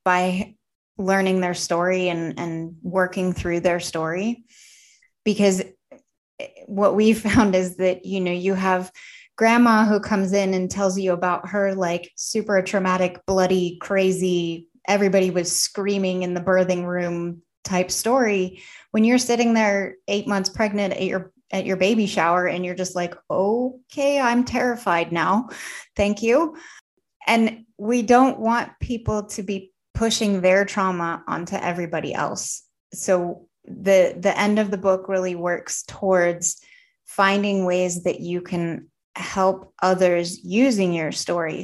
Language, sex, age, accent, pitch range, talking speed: English, female, 20-39, American, 180-205 Hz, 145 wpm